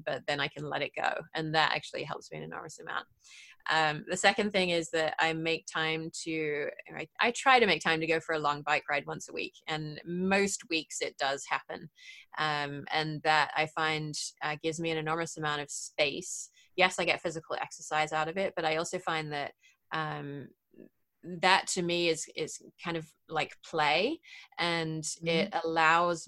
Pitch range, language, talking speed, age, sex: 155-180 Hz, English, 195 wpm, 20-39, female